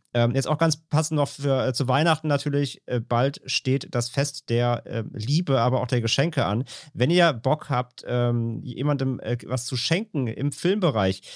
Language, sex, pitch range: German, male, 115-140 Hz